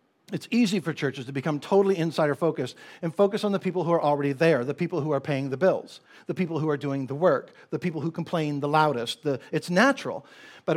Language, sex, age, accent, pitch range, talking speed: English, male, 60-79, American, 155-200 Hz, 225 wpm